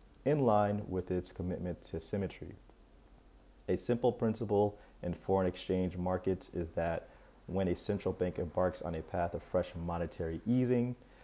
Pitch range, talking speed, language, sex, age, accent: 85-105 Hz, 150 wpm, English, male, 30-49, American